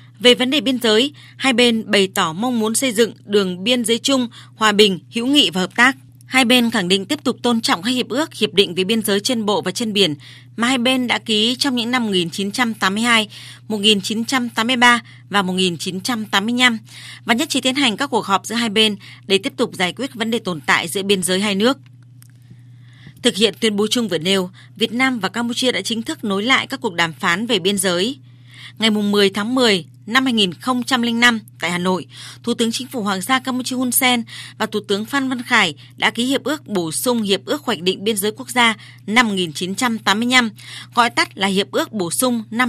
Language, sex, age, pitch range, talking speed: Vietnamese, female, 20-39, 190-245 Hz, 215 wpm